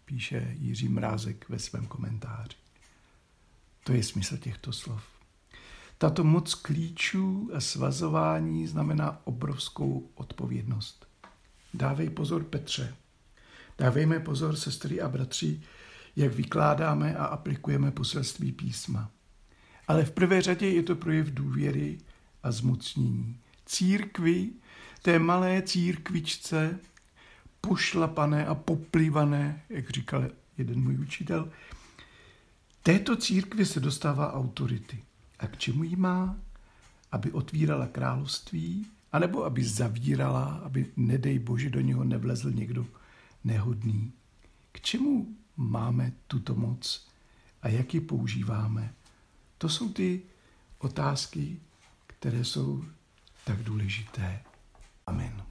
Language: Czech